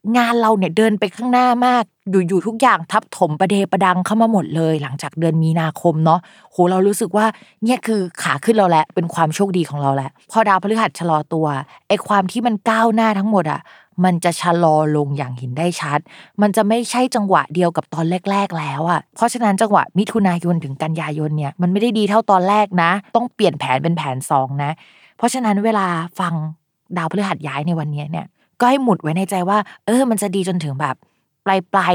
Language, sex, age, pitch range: Thai, female, 20-39, 155-205 Hz